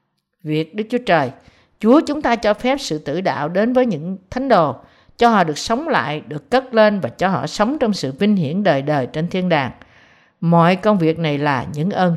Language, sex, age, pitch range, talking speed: Vietnamese, female, 50-69, 160-230 Hz, 220 wpm